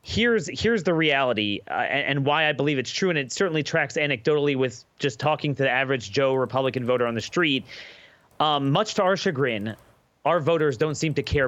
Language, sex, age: English, male, 30-49